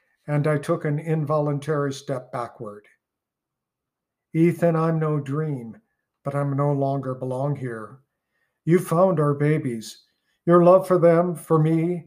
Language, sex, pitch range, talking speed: English, male, 135-160 Hz, 135 wpm